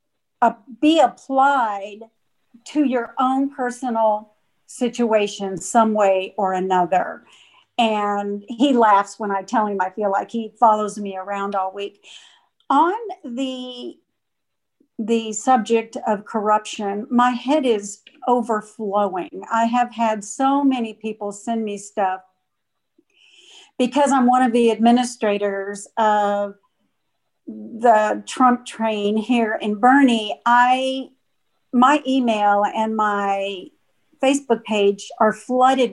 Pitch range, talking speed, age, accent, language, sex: 205-255 Hz, 115 wpm, 50-69, American, English, female